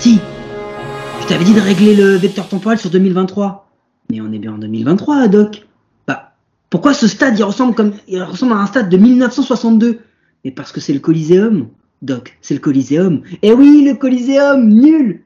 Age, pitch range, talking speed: 30-49, 180-240 Hz, 185 wpm